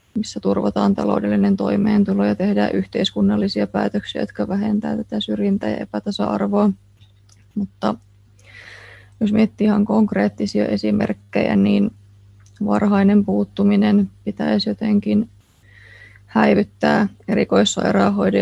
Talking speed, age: 90 wpm, 20-39